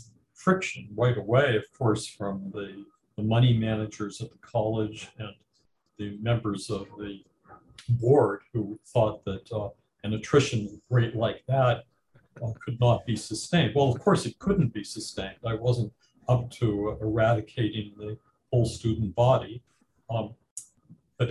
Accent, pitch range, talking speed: American, 105-125 Hz, 145 wpm